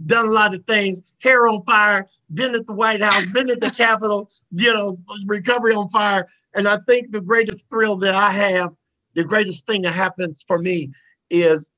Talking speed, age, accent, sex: 200 wpm, 50-69, American, male